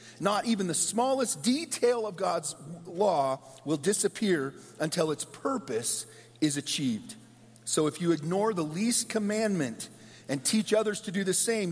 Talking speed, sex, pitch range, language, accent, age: 150 wpm, male, 130-210 Hz, English, American, 40-59